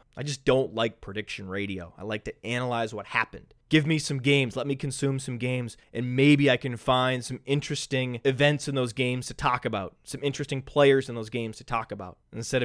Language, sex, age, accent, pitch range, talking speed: English, male, 20-39, American, 120-155 Hz, 215 wpm